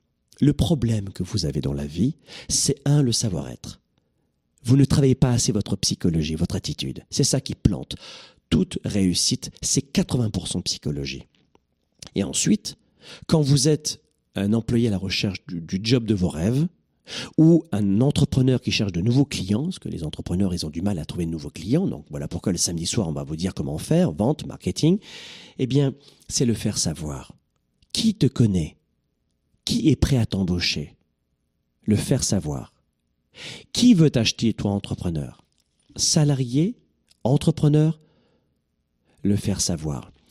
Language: French